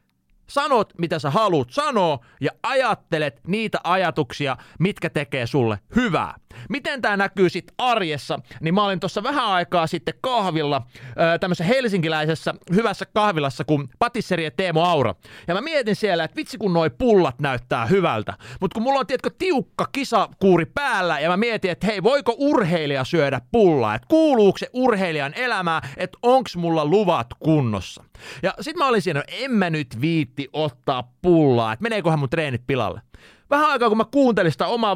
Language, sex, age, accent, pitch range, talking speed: Finnish, male, 30-49, native, 150-210 Hz, 165 wpm